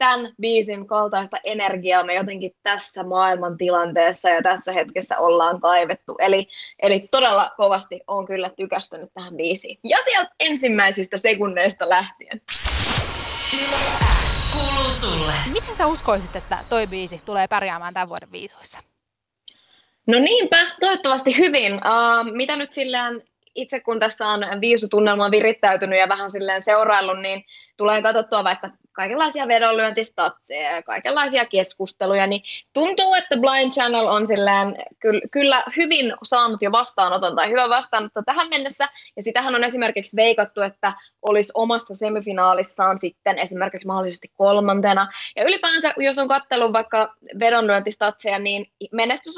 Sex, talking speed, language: female, 125 wpm, Finnish